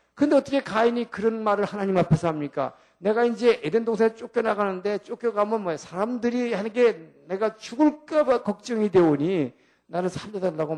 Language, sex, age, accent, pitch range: Korean, male, 50-69, native, 180-250 Hz